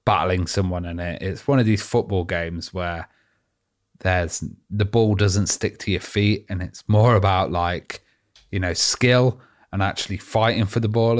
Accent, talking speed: British, 170 wpm